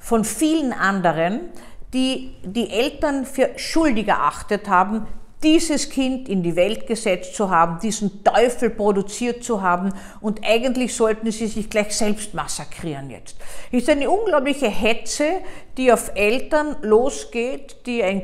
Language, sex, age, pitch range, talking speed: German, female, 50-69, 200-260 Hz, 140 wpm